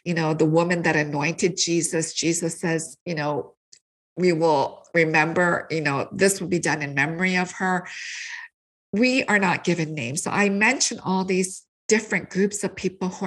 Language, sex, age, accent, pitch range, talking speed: English, female, 50-69, American, 170-215 Hz, 175 wpm